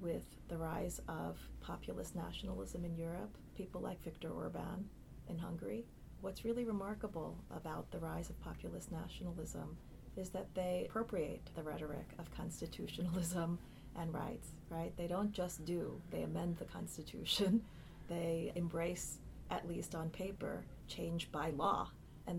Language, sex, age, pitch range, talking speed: English, female, 30-49, 165-190 Hz, 140 wpm